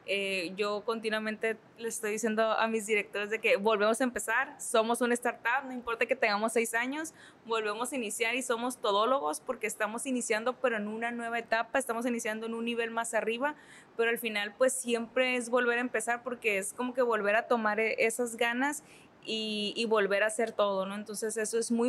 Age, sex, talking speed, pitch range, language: 20-39, female, 200 wpm, 215-245 Hz, Spanish